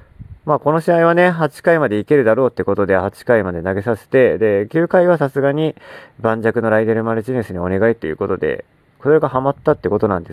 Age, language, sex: 40-59, Japanese, male